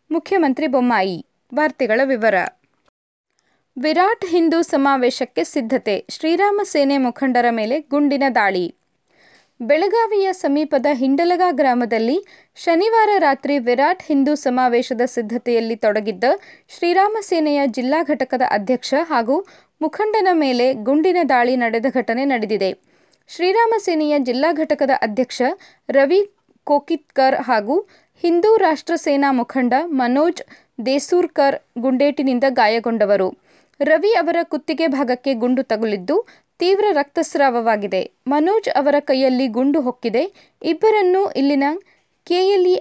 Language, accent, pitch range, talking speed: Kannada, native, 255-335 Hz, 100 wpm